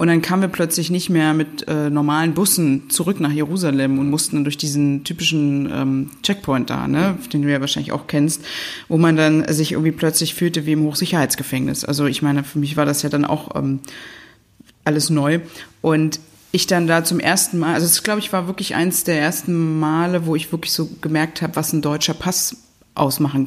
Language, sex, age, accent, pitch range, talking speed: German, female, 30-49, German, 145-170 Hz, 205 wpm